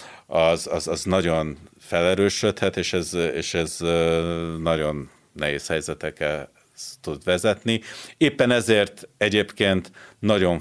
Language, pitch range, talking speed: Hungarian, 80-95 Hz, 95 wpm